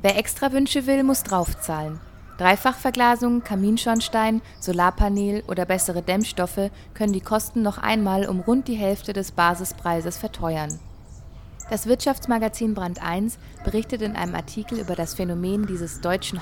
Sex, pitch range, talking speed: female, 170-220 Hz, 135 wpm